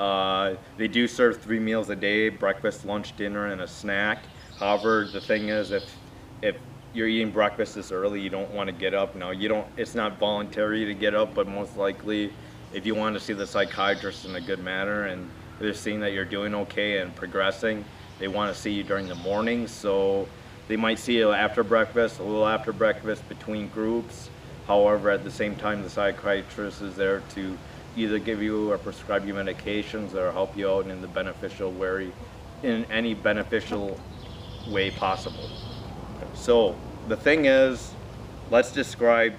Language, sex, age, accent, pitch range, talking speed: English, male, 30-49, American, 100-110 Hz, 185 wpm